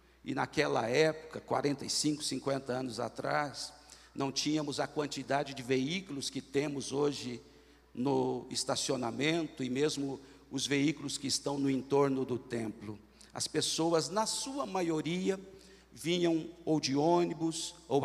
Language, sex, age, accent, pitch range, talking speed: Portuguese, male, 50-69, Brazilian, 135-170 Hz, 125 wpm